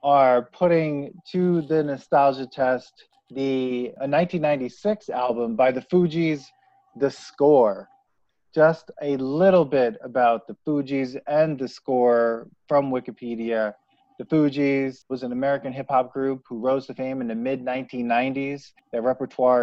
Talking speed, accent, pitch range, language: 130 wpm, American, 120-140 Hz, English